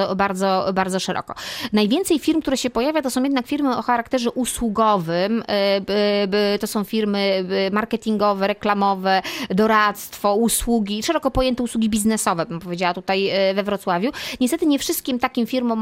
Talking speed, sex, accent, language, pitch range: 135 wpm, female, native, Polish, 195-230 Hz